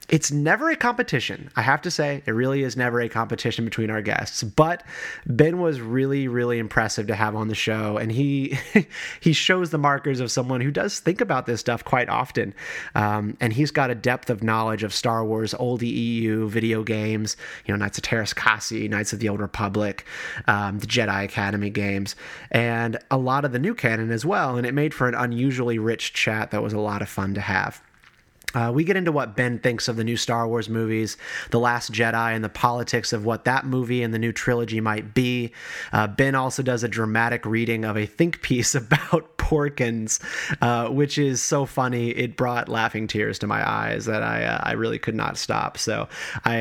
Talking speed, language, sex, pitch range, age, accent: 210 wpm, English, male, 110-135 Hz, 30-49, American